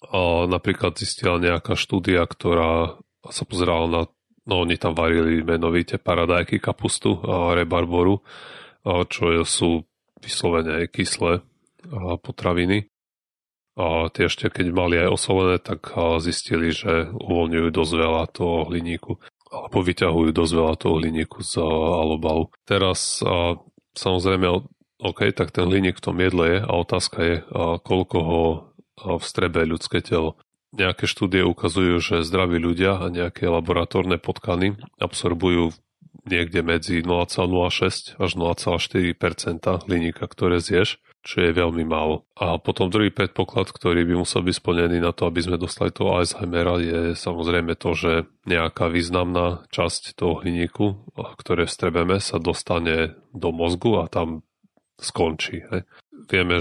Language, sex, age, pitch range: Slovak, male, 30-49, 85-95 Hz